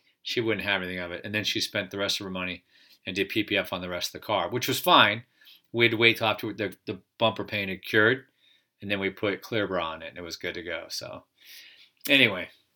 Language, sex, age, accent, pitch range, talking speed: English, male, 40-59, American, 105-135 Hz, 260 wpm